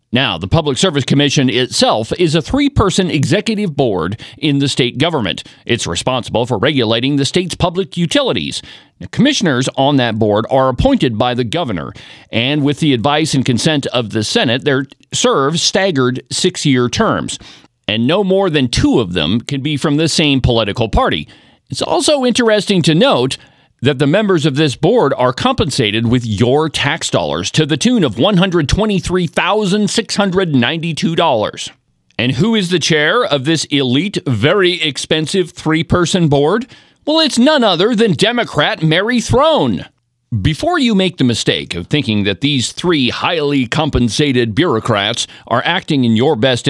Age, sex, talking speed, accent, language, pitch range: 50-69, male, 155 wpm, American, English, 125-180 Hz